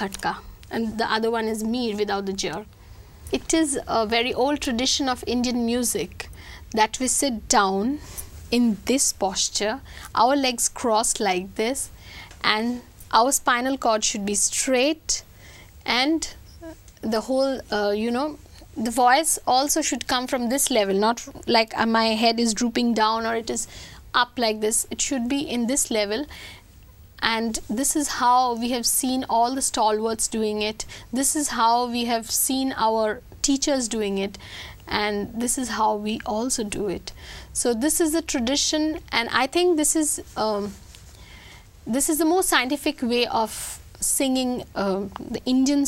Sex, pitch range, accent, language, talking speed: female, 220-275 Hz, Indian, English, 160 wpm